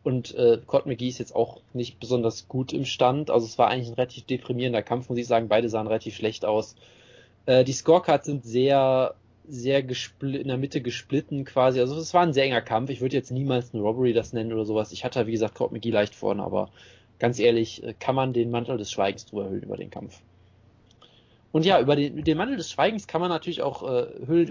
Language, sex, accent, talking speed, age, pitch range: German, male, German, 230 wpm, 20-39, 115-140 Hz